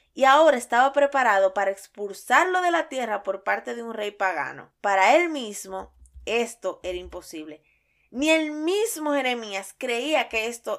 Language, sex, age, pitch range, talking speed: Spanish, female, 20-39, 195-260 Hz, 155 wpm